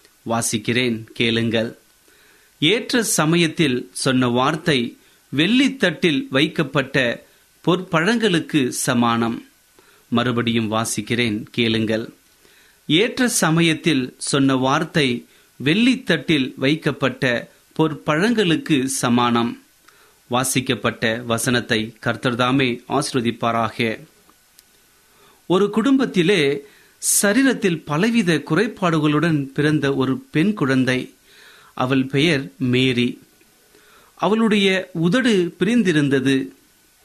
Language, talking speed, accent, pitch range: Tamil, 40 wpm, native, 125-165 Hz